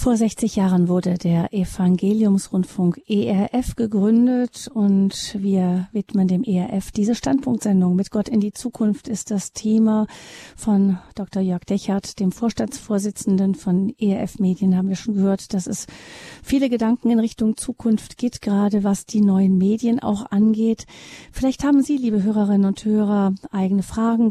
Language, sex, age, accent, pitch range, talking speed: German, female, 40-59, German, 195-225 Hz, 150 wpm